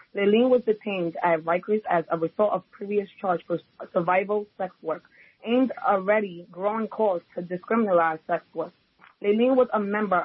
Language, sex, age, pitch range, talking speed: English, female, 30-49, 175-210 Hz, 160 wpm